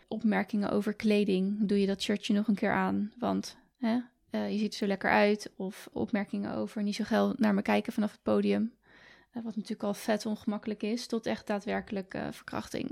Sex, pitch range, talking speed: female, 200-225 Hz, 205 wpm